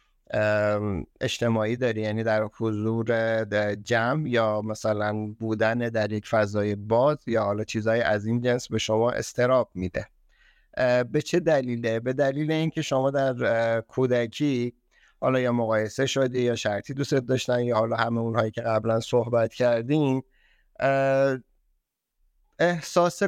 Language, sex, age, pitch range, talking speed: Persian, male, 50-69, 110-135 Hz, 125 wpm